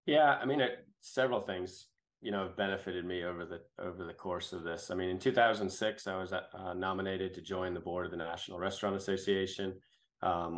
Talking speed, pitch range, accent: 200 wpm, 85-100 Hz, American